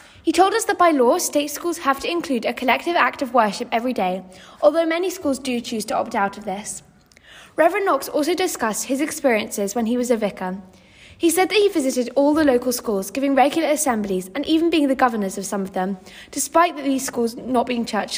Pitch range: 220-310 Hz